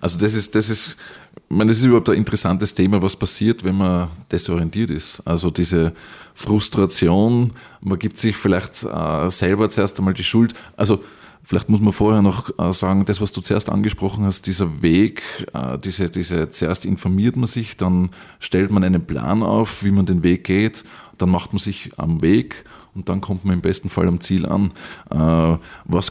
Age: 20-39